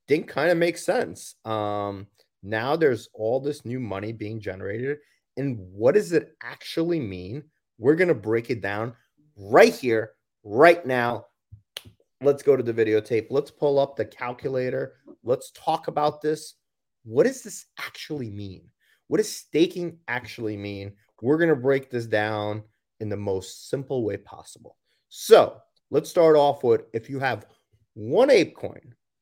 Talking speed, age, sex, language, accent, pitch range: 155 wpm, 30-49, male, English, American, 110-155 Hz